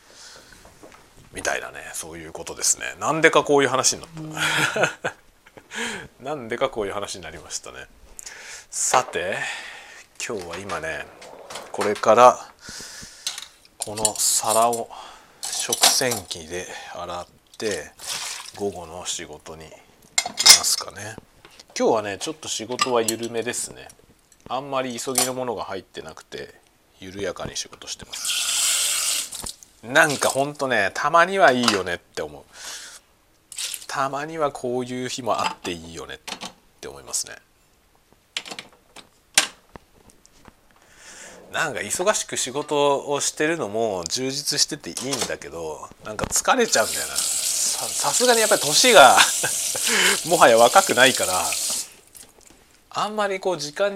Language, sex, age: Japanese, male, 40-59